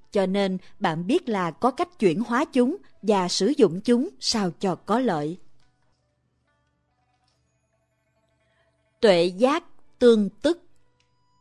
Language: Vietnamese